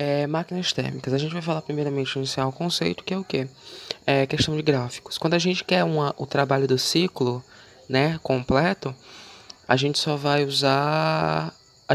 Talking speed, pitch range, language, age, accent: 180 wpm, 125-150 Hz, English, 20-39, Brazilian